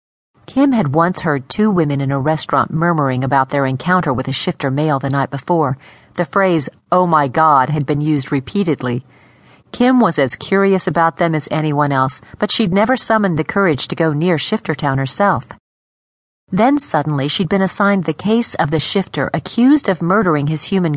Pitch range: 140-195 Hz